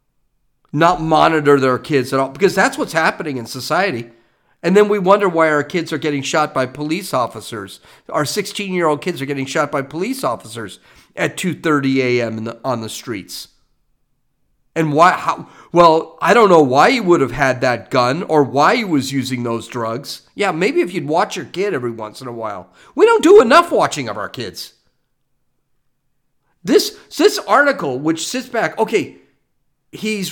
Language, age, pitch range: English, 50-69, 140-225 Hz